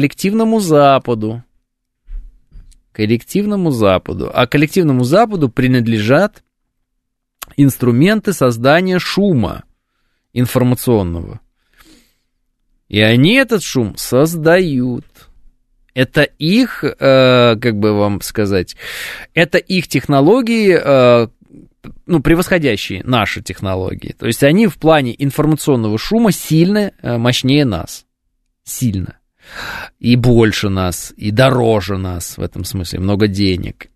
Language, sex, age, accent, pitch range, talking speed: Russian, male, 20-39, native, 105-160 Hz, 90 wpm